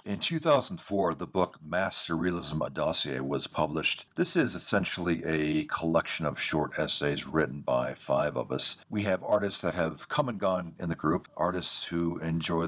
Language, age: English, 40-59